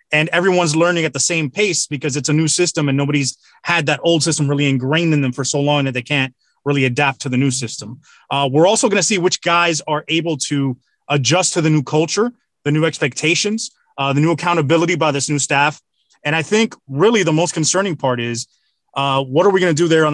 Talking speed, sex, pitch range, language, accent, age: 235 wpm, male, 130-160 Hz, English, American, 30-49